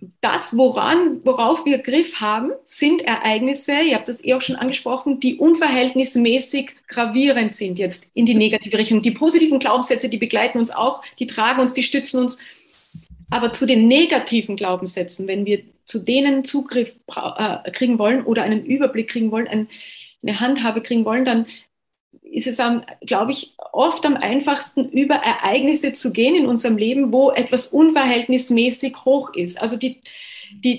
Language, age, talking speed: German, 30-49, 160 wpm